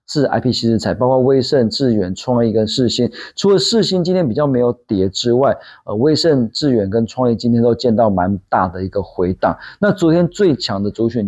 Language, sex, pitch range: Chinese, male, 100-140 Hz